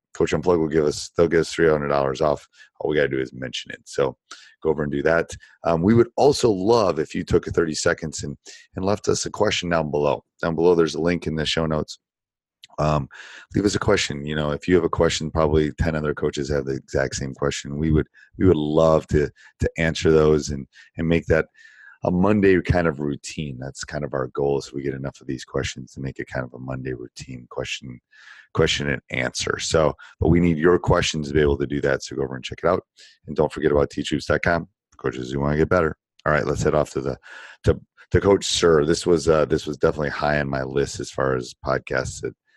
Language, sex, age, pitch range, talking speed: English, male, 30-49, 65-80 Hz, 245 wpm